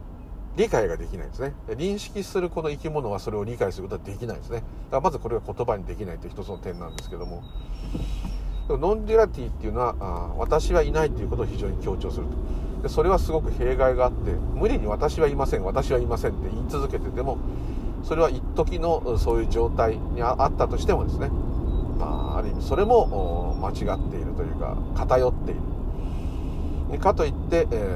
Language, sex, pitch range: Japanese, male, 75-90 Hz